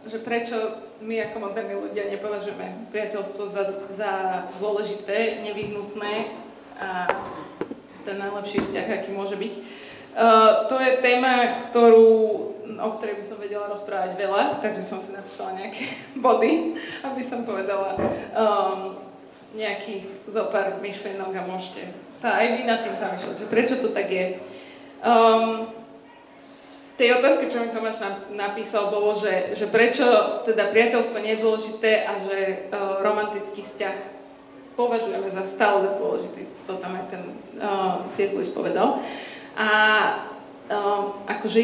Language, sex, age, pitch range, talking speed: Slovak, female, 20-39, 200-225 Hz, 135 wpm